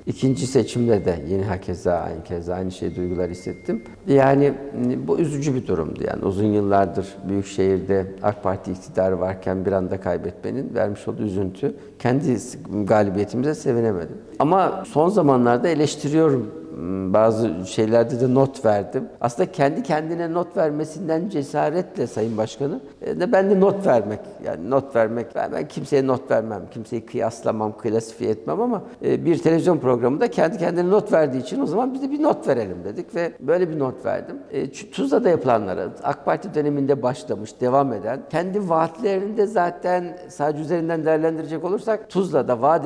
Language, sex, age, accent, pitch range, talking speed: Turkish, male, 60-79, native, 110-155 Hz, 150 wpm